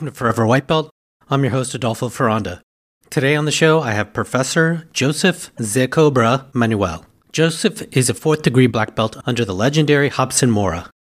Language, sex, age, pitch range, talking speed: English, male, 40-59, 110-140 Hz, 160 wpm